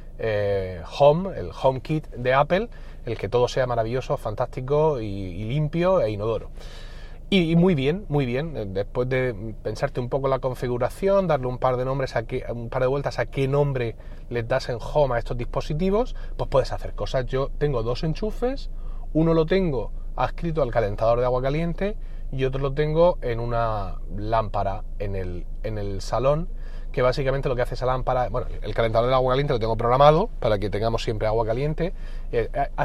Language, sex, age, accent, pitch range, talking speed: Spanish, male, 30-49, Spanish, 110-150 Hz, 190 wpm